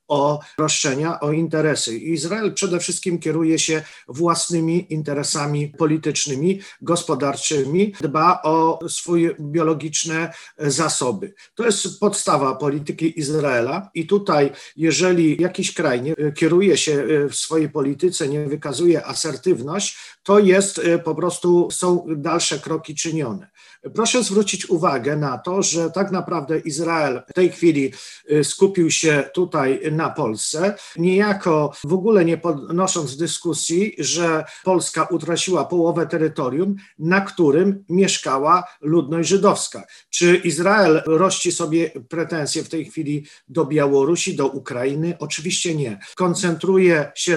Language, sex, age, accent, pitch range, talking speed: Polish, male, 50-69, native, 150-180 Hz, 120 wpm